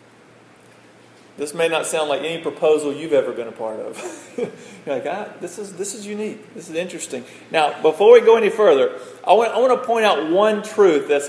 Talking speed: 200 wpm